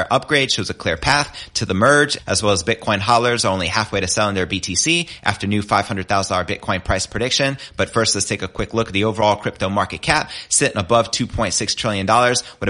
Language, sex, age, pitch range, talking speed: English, male, 30-49, 95-120 Hz, 220 wpm